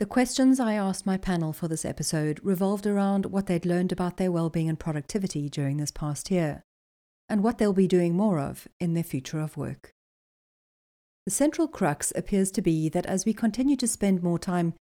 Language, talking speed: English, 195 wpm